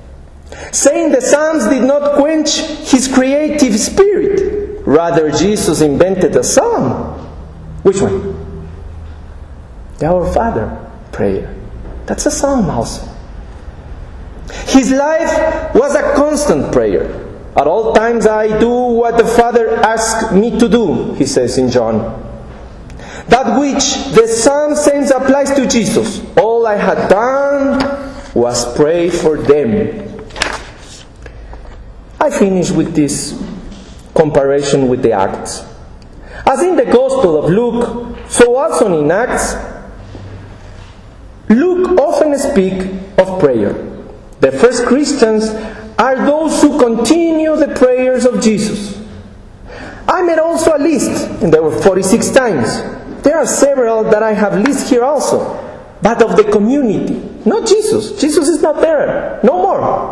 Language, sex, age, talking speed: English, male, 40-59, 125 wpm